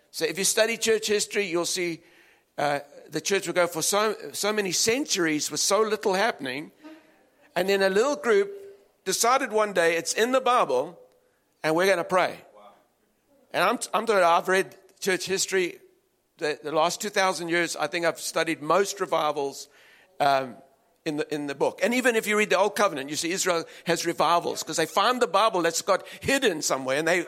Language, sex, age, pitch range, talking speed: English, male, 50-69, 165-230 Hz, 200 wpm